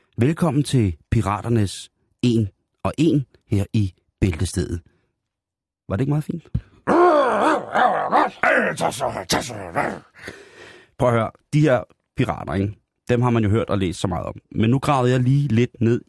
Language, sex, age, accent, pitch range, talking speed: Danish, male, 30-49, native, 105-135 Hz, 140 wpm